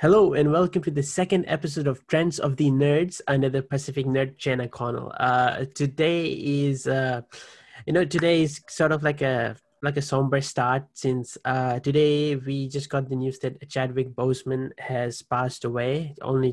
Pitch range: 125-145 Hz